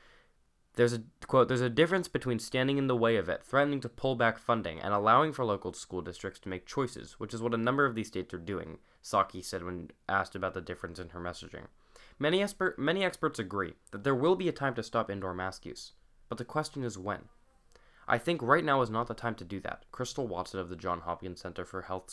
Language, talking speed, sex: English, 235 wpm, male